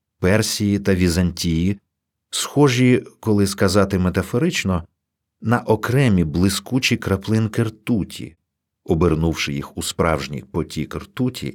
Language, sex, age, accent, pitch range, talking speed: Ukrainian, male, 50-69, native, 85-120 Hz, 95 wpm